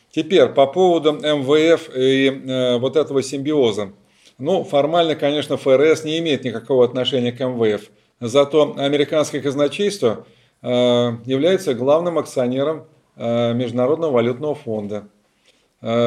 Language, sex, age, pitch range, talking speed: Russian, male, 40-59, 120-145 Hz, 115 wpm